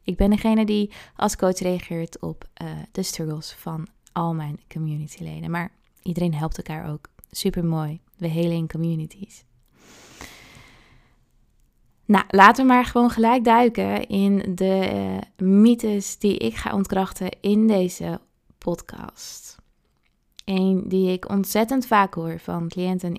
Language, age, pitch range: Dutch, 20-39, 170-200 Hz